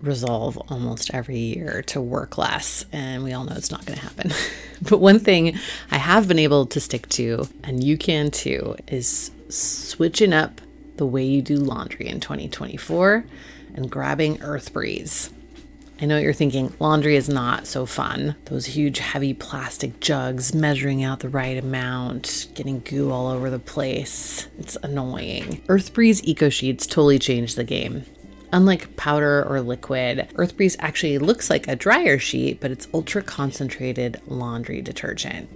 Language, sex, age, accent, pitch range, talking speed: English, female, 30-49, American, 130-165 Hz, 160 wpm